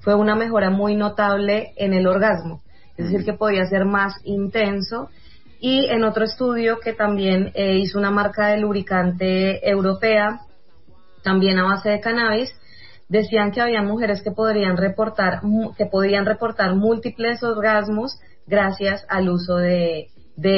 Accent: Colombian